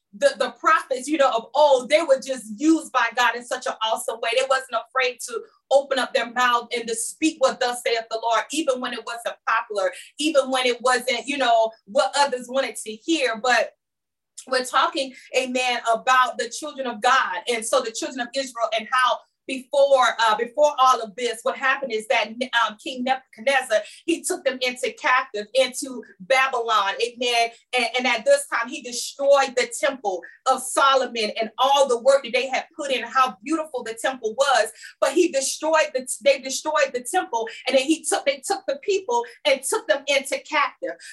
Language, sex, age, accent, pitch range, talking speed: English, female, 30-49, American, 245-290 Hz, 195 wpm